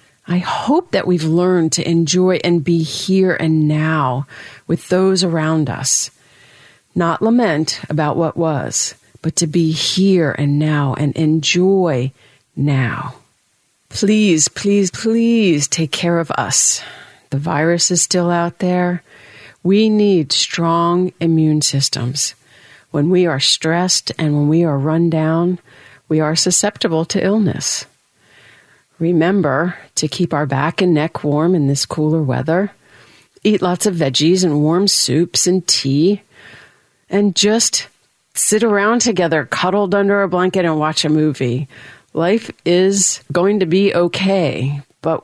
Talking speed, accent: 140 wpm, American